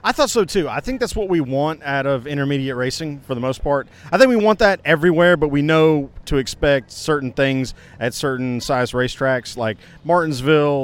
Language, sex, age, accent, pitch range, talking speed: English, male, 40-59, American, 130-175 Hz, 205 wpm